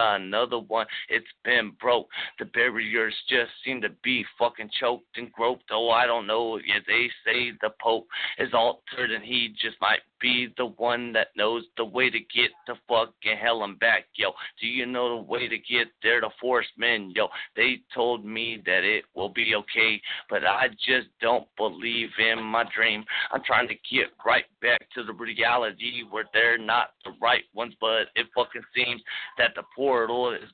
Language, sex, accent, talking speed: English, male, American, 190 wpm